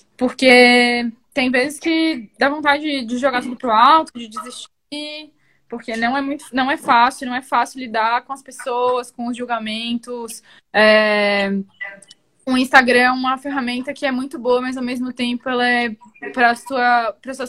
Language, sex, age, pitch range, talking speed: Portuguese, female, 10-29, 240-290 Hz, 170 wpm